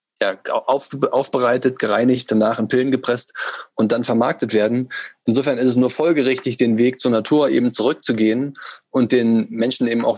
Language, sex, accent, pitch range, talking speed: German, male, German, 115-140 Hz, 155 wpm